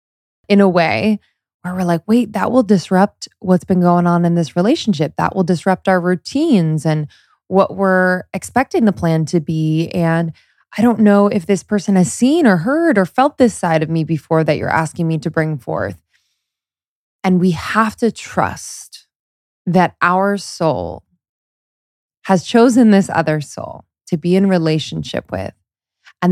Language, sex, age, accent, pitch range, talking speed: English, female, 20-39, American, 155-190 Hz, 170 wpm